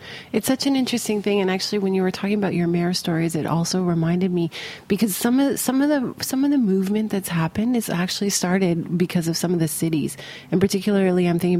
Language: English